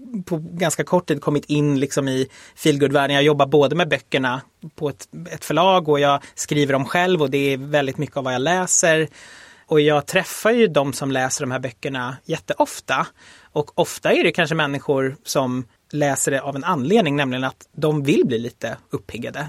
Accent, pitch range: native, 135-160 Hz